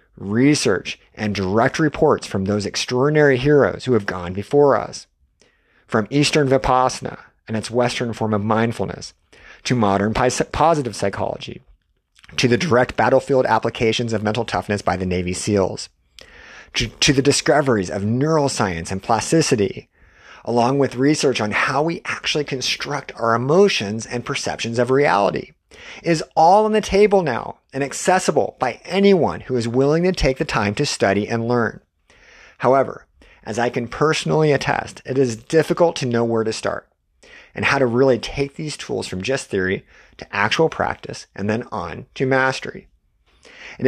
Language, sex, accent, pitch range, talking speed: English, male, American, 105-140 Hz, 155 wpm